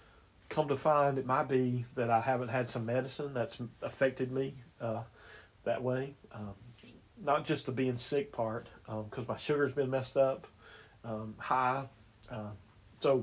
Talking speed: 165 wpm